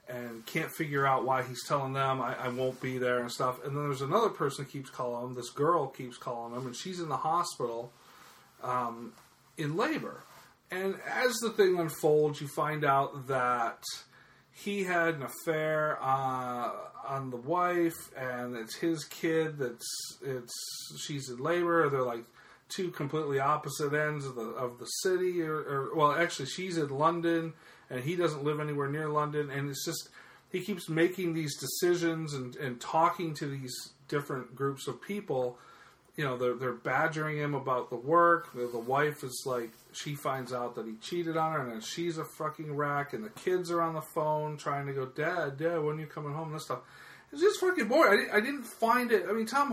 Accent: American